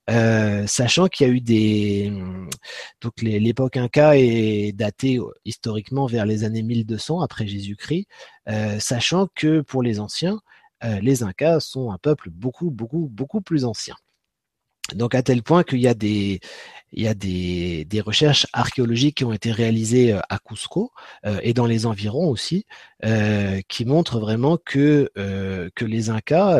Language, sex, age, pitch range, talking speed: French, male, 30-49, 105-135 Hz, 165 wpm